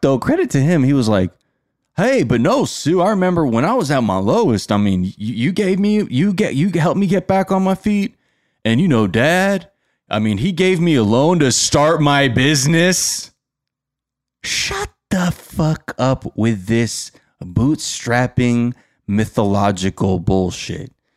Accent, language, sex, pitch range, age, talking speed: American, English, male, 95-135 Hz, 20-39, 165 wpm